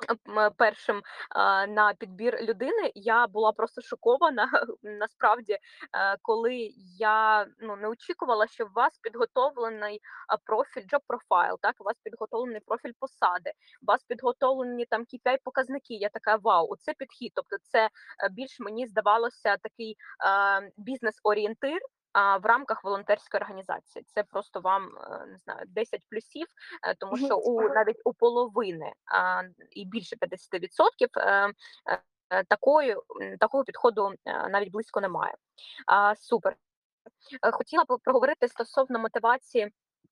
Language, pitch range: Ukrainian, 210-270 Hz